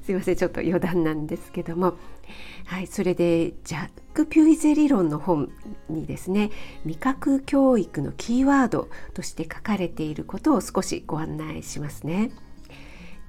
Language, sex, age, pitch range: Japanese, female, 50-69, 170-225 Hz